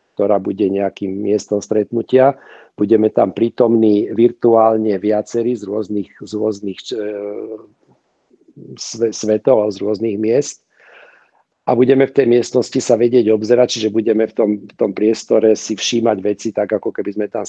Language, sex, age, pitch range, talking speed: Slovak, male, 50-69, 105-115 Hz, 140 wpm